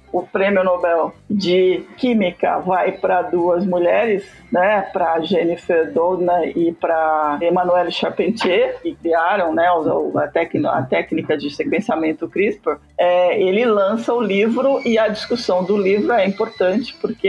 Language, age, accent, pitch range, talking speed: Portuguese, 50-69, Brazilian, 180-215 Hz, 130 wpm